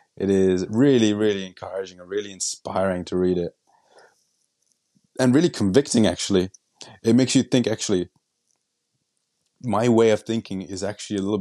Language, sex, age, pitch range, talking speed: English, male, 30-49, 95-115 Hz, 145 wpm